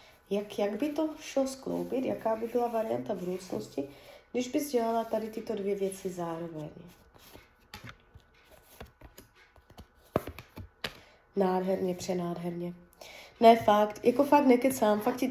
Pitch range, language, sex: 200-250 Hz, Czech, female